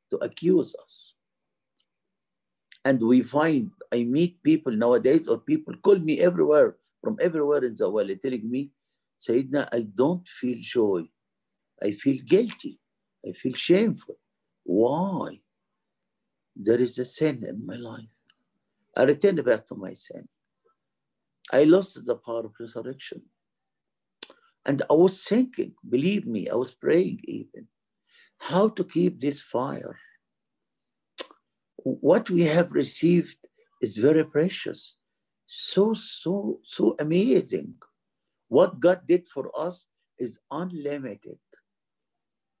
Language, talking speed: English, 125 wpm